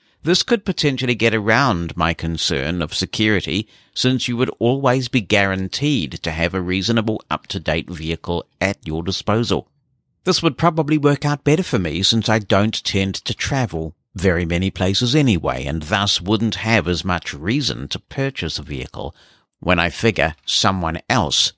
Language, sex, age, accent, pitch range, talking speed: English, male, 50-69, British, 85-120 Hz, 160 wpm